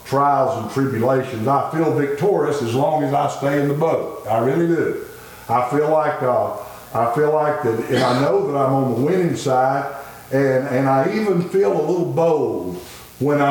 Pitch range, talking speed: 125-155 Hz, 190 wpm